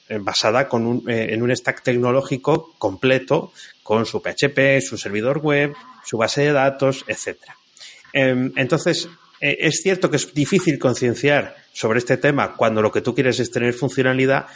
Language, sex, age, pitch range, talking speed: Spanish, male, 30-49, 110-145 Hz, 165 wpm